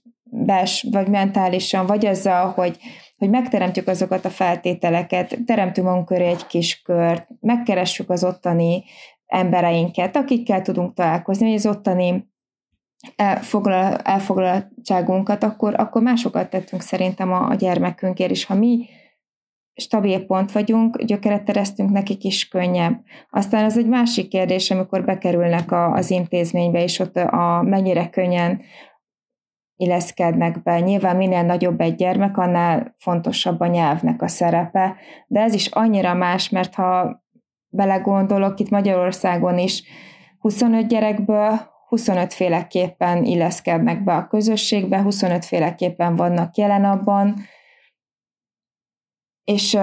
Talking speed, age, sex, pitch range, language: 120 wpm, 20-39, female, 180-205 Hz, Hungarian